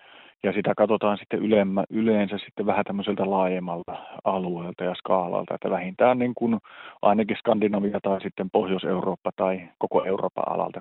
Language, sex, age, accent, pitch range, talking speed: Finnish, male, 30-49, native, 95-110 Hz, 120 wpm